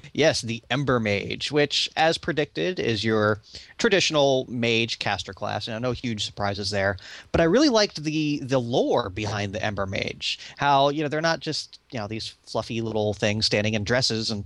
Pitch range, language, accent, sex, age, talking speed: 110-135 Hz, English, American, male, 30-49, 195 wpm